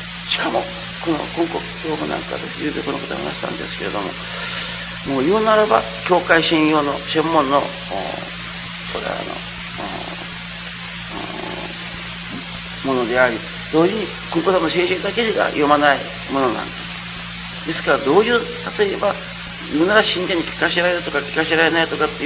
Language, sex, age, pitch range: Japanese, male, 40-59, 145-180 Hz